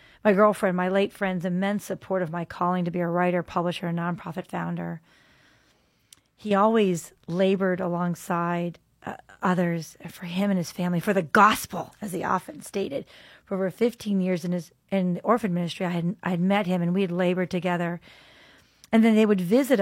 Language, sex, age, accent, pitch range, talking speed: English, female, 40-59, American, 175-195 Hz, 190 wpm